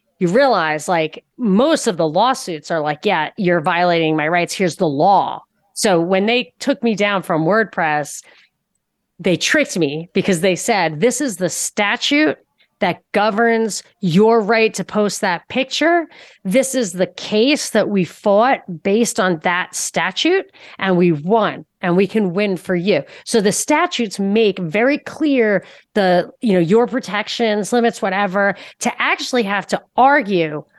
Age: 30-49